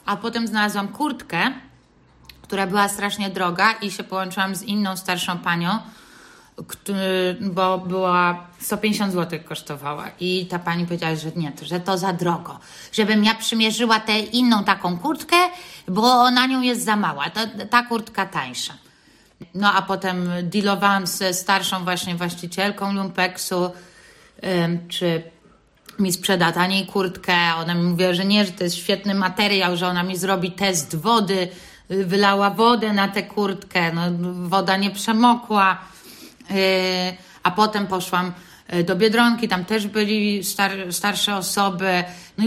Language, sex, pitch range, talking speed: Polish, female, 180-215 Hz, 135 wpm